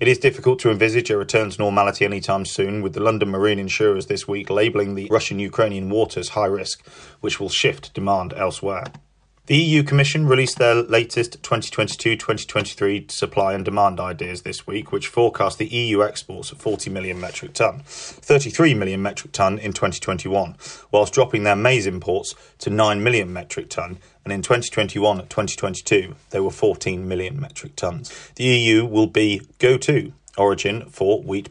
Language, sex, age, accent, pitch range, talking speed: English, male, 30-49, British, 100-115 Hz, 160 wpm